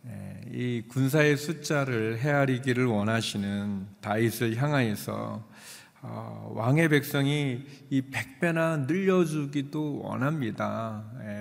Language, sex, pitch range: Korean, male, 105-140 Hz